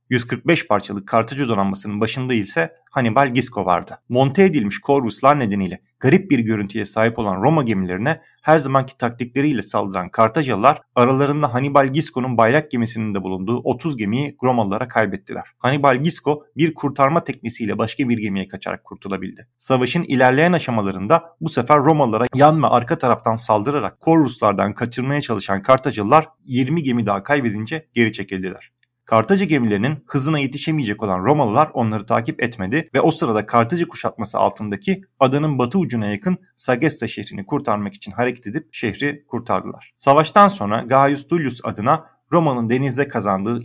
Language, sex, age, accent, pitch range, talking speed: Turkish, male, 40-59, native, 110-145 Hz, 140 wpm